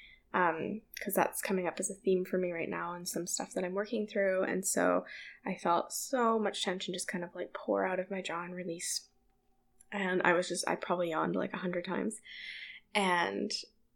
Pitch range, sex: 185-235 Hz, female